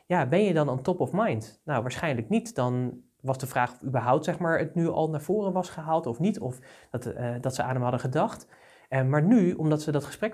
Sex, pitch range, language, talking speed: male, 125-160 Hz, Dutch, 230 wpm